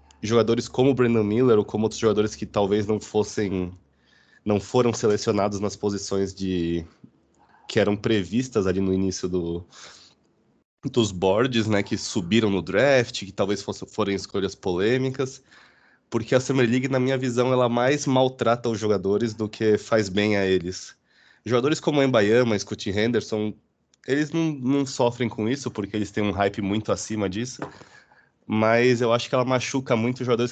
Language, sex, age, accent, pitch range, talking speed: Portuguese, male, 20-39, Brazilian, 100-125 Hz, 170 wpm